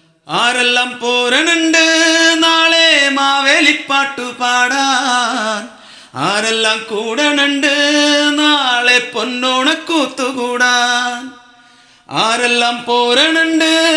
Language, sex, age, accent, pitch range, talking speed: Malayalam, male, 30-49, native, 185-245 Hz, 45 wpm